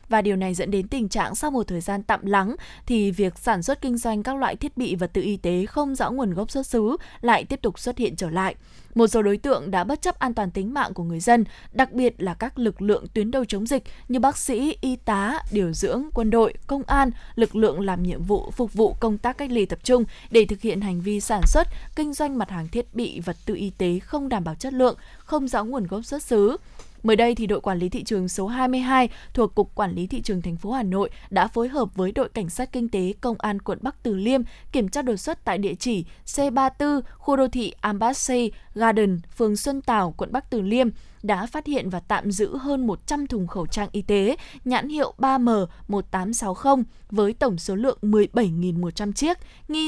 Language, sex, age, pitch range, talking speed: Vietnamese, female, 10-29, 200-255 Hz, 235 wpm